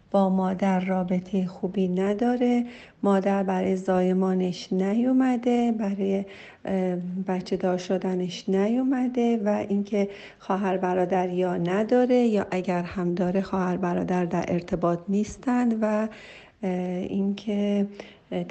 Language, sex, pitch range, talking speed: Persian, female, 180-210 Hz, 95 wpm